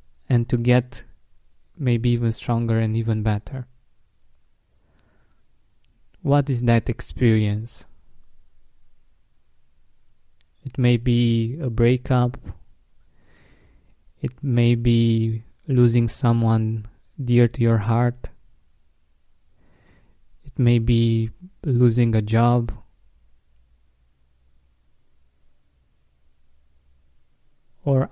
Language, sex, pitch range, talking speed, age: English, male, 90-125 Hz, 75 wpm, 20-39